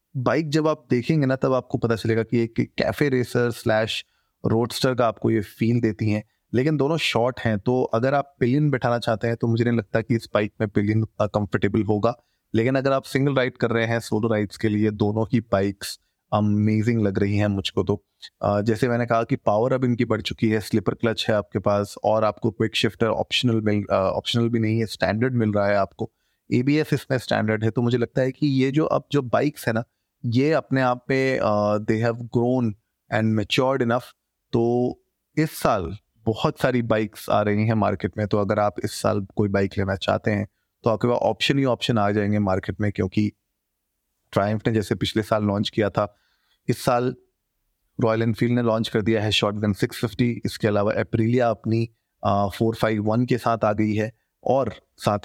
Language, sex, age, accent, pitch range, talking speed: Hindi, male, 30-49, native, 105-125 Hz, 195 wpm